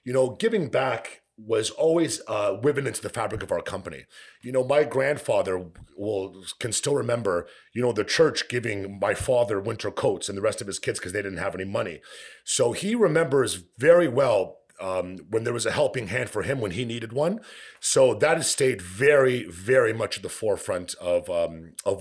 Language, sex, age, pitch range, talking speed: English, male, 40-59, 115-170 Hz, 195 wpm